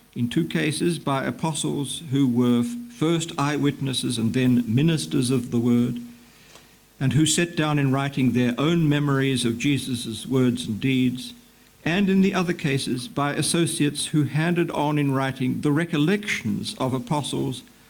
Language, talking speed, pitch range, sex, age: Slovak, 150 wpm, 130-165 Hz, male, 60-79